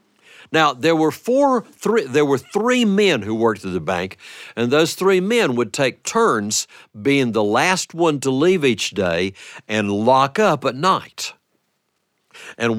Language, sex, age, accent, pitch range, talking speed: English, male, 60-79, American, 110-180 Hz, 165 wpm